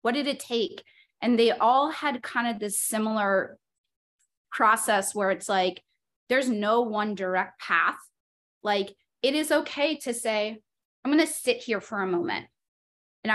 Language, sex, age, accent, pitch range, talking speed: English, female, 20-39, American, 215-255 Hz, 160 wpm